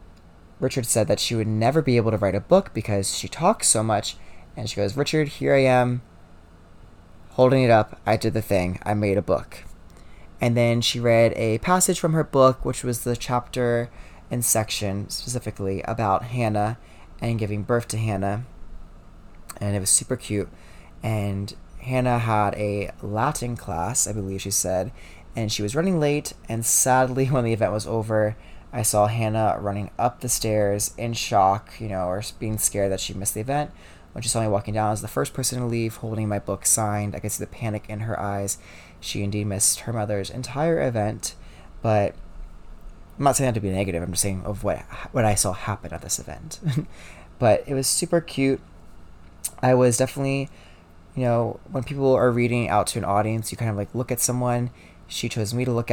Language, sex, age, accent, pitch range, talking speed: English, male, 20-39, American, 95-120 Hz, 200 wpm